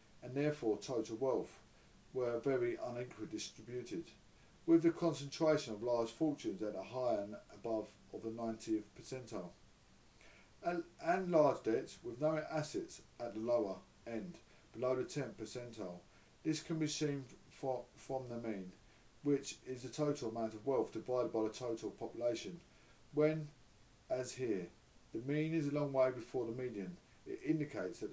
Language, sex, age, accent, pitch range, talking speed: English, male, 50-69, British, 110-145 Hz, 150 wpm